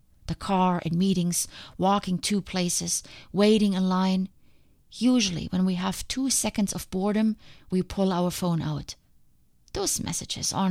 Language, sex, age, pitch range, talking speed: English, female, 30-49, 170-200 Hz, 145 wpm